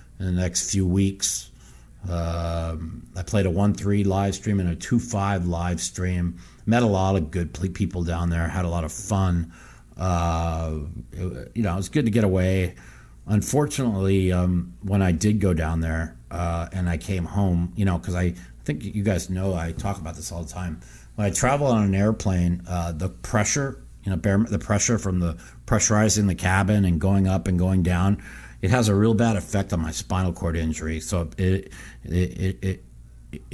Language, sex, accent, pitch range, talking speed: English, male, American, 85-100 Hz, 195 wpm